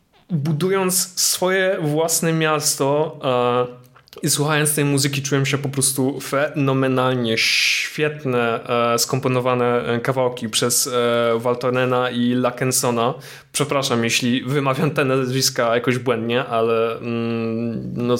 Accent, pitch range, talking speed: native, 120-150 Hz, 110 wpm